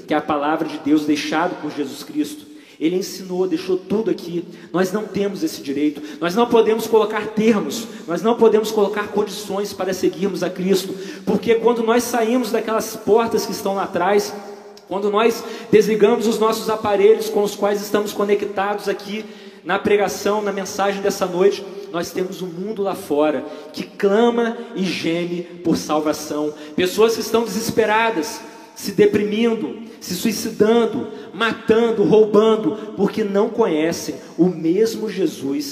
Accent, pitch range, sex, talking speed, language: Brazilian, 160-220 Hz, male, 150 wpm, Portuguese